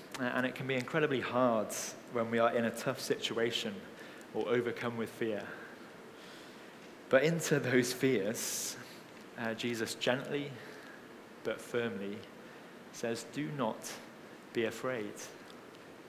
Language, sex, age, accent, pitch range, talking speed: English, male, 20-39, British, 115-150 Hz, 115 wpm